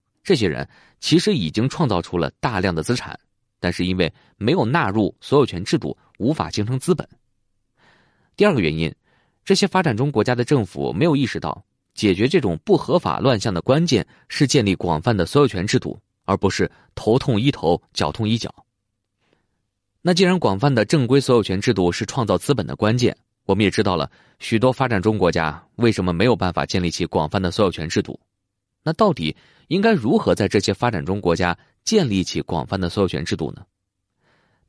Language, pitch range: Chinese, 90-130 Hz